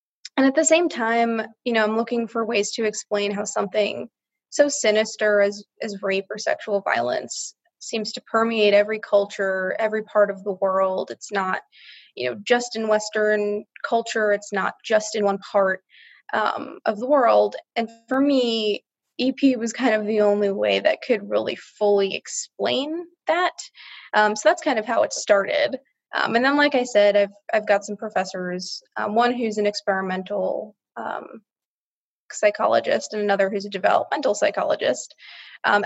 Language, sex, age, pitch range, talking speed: English, female, 20-39, 195-230 Hz, 165 wpm